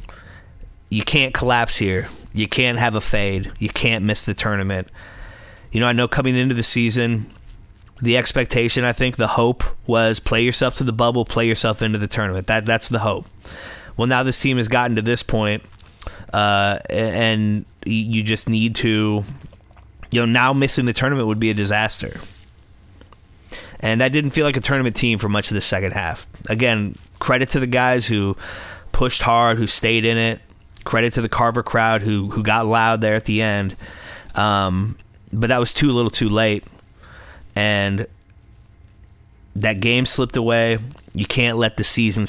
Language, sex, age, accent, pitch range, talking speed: English, male, 30-49, American, 100-120 Hz, 175 wpm